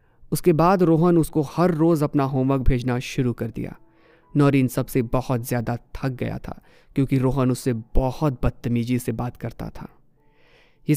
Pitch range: 125-160 Hz